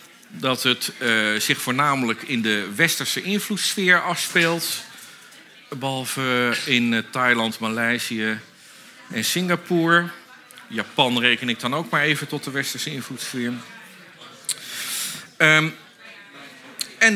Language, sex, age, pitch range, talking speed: Dutch, male, 50-69, 120-170 Hz, 100 wpm